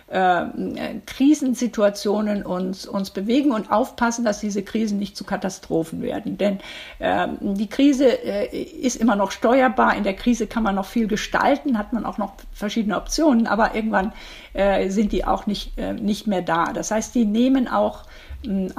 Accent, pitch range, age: German, 200-245 Hz, 50-69